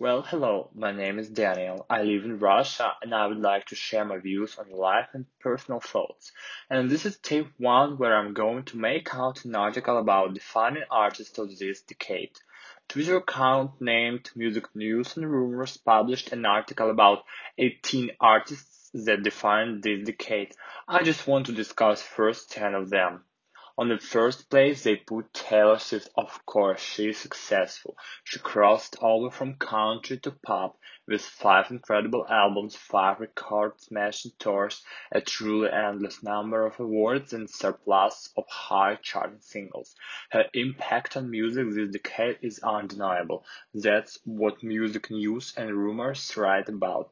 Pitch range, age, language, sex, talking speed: 105-125 Hz, 20-39, English, male, 160 wpm